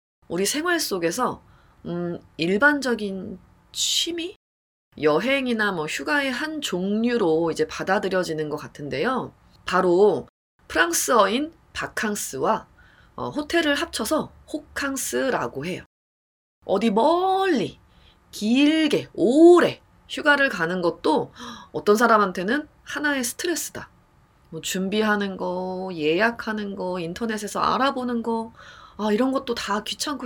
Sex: female